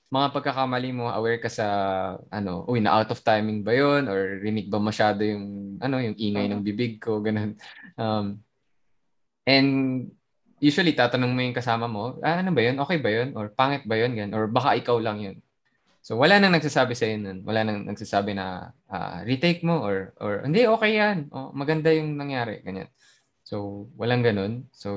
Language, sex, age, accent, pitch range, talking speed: English, male, 20-39, Filipino, 100-130 Hz, 185 wpm